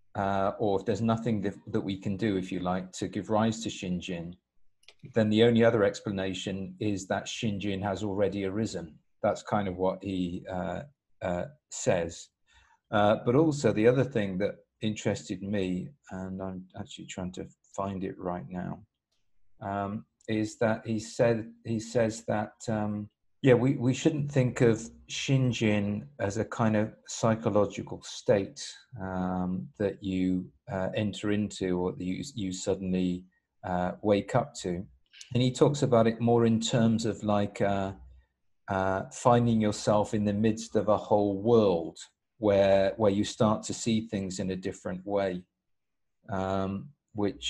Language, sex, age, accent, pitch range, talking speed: English, male, 40-59, British, 95-115 Hz, 160 wpm